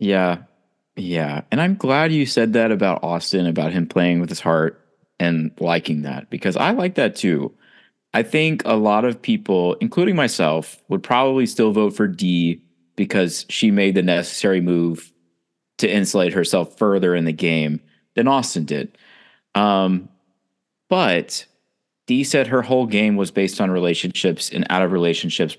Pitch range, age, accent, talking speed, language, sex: 90-115 Hz, 30-49, American, 160 wpm, English, male